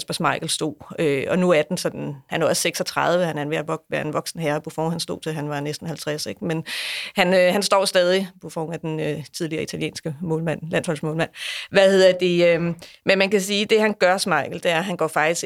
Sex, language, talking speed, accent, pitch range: female, Danish, 235 wpm, native, 160-185 Hz